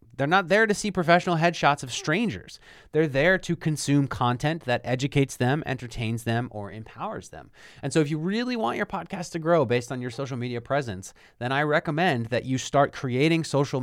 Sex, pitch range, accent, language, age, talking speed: male, 120-170 Hz, American, English, 30-49, 200 wpm